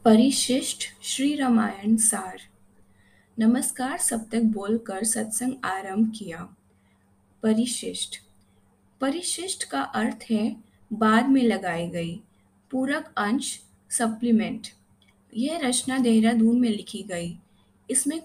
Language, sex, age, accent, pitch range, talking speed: Hindi, female, 20-39, native, 190-250 Hz, 100 wpm